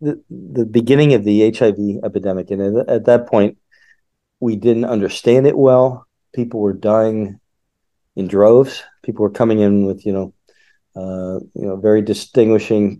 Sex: male